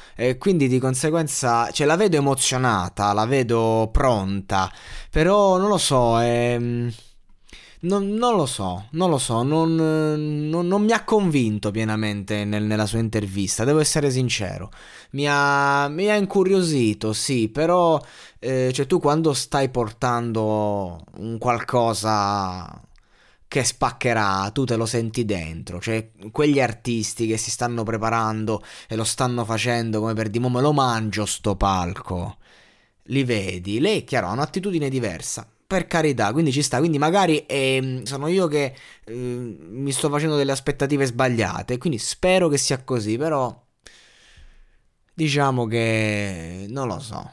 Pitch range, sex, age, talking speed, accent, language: 110-150 Hz, male, 20-39, 145 wpm, native, Italian